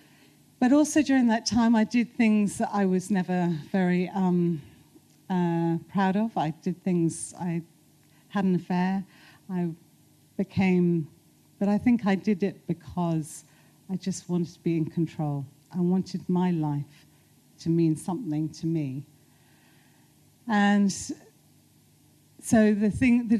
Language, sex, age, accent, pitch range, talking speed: English, female, 40-59, British, 155-195 Hz, 140 wpm